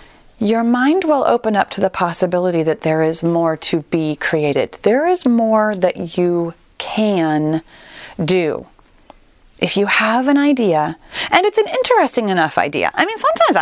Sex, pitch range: female, 180-285 Hz